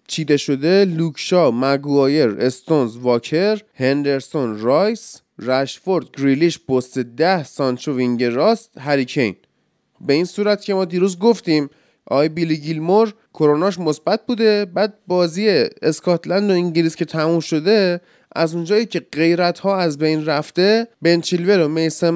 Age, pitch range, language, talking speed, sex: 20-39, 155-195 Hz, Persian, 125 wpm, male